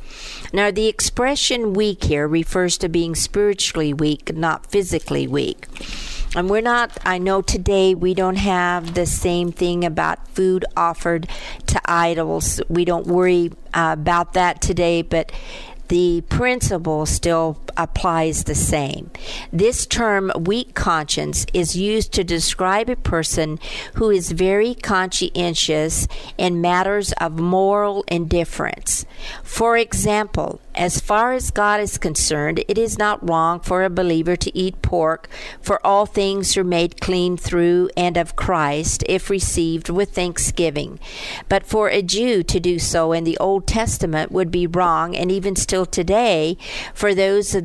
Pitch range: 165-195 Hz